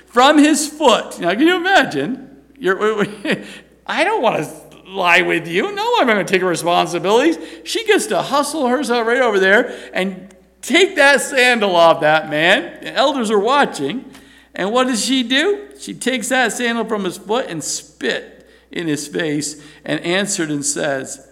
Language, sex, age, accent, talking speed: English, male, 50-69, American, 170 wpm